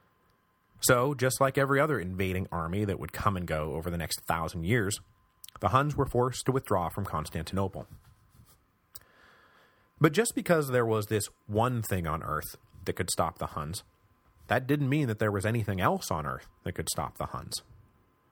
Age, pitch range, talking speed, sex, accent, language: 30-49, 90-125 Hz, 180 wpm, male, American, English